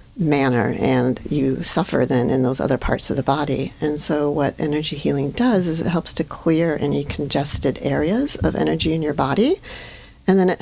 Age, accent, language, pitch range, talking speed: 40-59, American, English, 140-175 Hz, 190 wpm